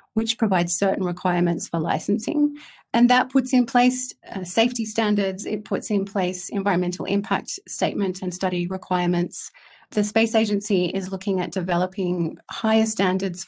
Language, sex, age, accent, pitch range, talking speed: English, female, 30-49, Australian, 180-225 Hz, 145 wpm